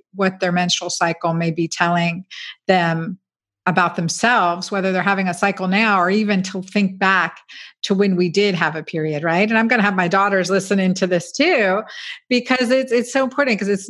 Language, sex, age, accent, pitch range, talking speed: English, female, 50-69, American, 180-210 Hz, 205 wpm